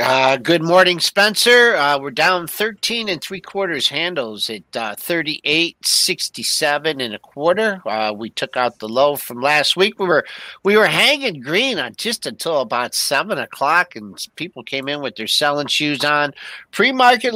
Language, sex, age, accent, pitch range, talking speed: English, male, 50-69, American, 130-180 Hz, 170 wpm